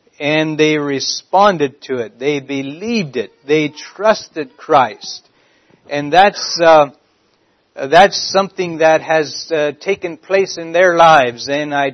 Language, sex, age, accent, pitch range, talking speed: English, male, 60-79, American, 145-170 Hz, 130 wpm